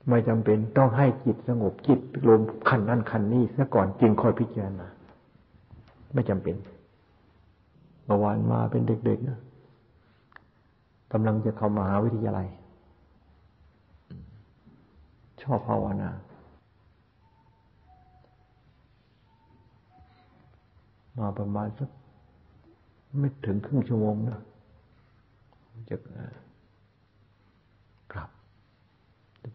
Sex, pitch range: male, 100-115 Hz